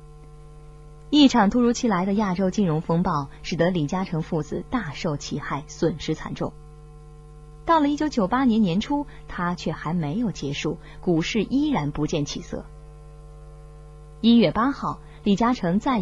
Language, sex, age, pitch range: Chinese, female, 20-39, 150-215 Hz